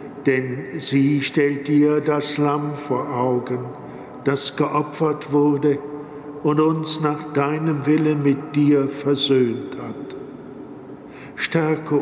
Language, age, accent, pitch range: German, 50-69, German, 140-155 Hz